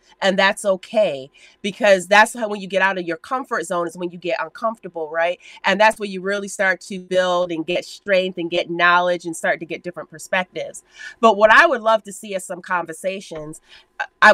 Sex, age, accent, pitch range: female, 30-49, American, 175-220 Hz